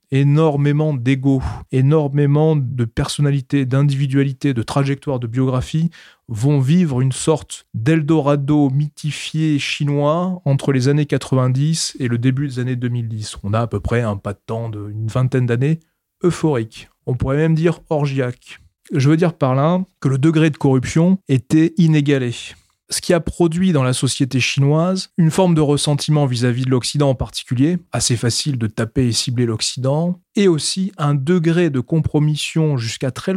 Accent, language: French, French